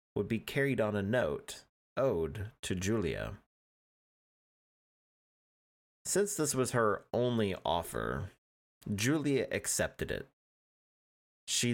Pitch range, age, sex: 90-125 Hz, 30-49, male